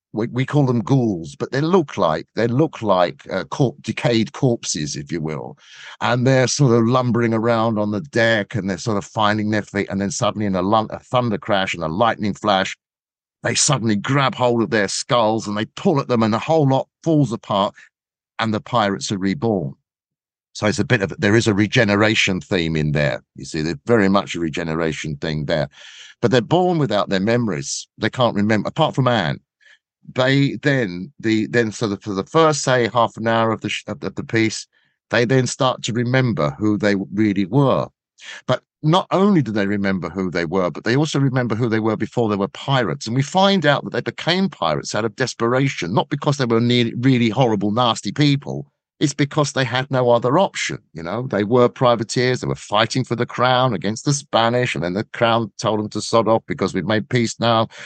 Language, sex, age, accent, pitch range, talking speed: English, male, 50-69, British, 100-130 Hz, 210 wpm